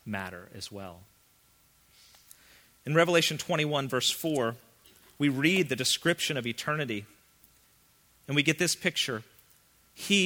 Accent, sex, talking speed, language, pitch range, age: American, male, 115 wpm, English, 110-150 Hz, 40-59